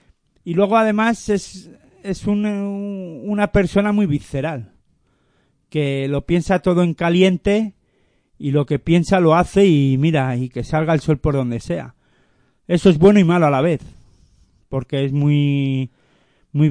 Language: Spanish